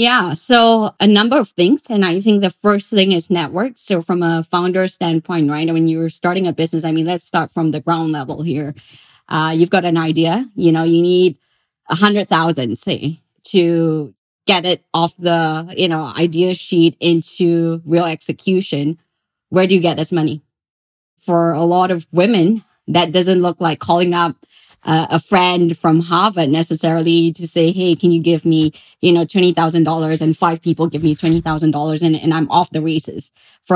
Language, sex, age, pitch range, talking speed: English, female, 20-39, 160-180 Hz, 185 wpm